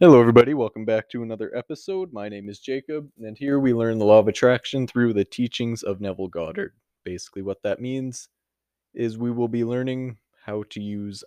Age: 20-39